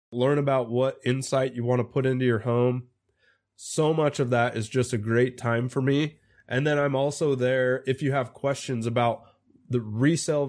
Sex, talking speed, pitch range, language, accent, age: male, 195 wpm, 115-135 Hz, English, American, 20-39